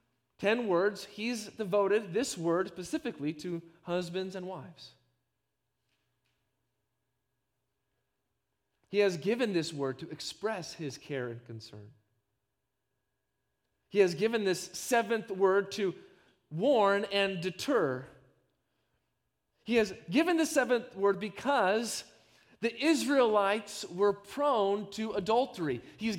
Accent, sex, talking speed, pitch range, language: American, male, 105 wpm, 135-220 Hz, English